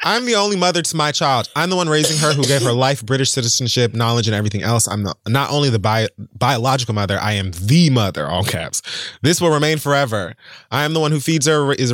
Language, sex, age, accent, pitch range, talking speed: English, male, 20-39, American, 95-130 Hz, 230 wpm